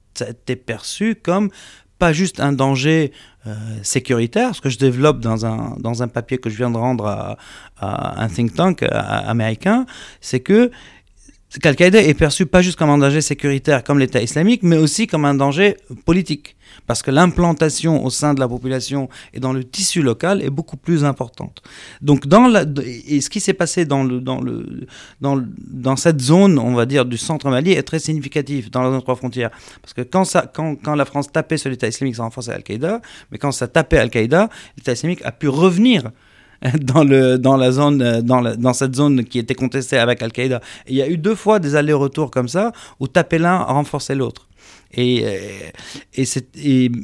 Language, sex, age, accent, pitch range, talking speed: French, male, 30-49, French, 125-160 Hz, 205 wpm